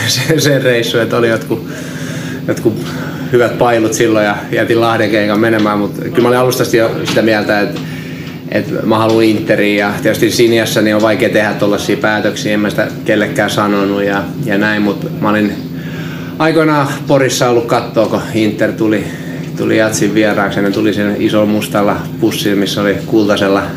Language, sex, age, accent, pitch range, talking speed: Finnish, male, 30-49, native, 105-125 Hz, 165 wpm